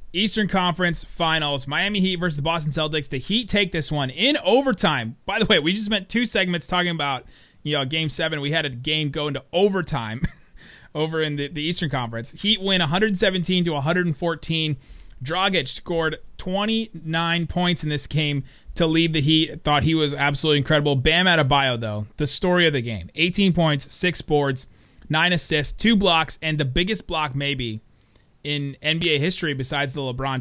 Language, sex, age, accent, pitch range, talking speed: English, male, 30-49, American, 140-180 Hz, 185 wpm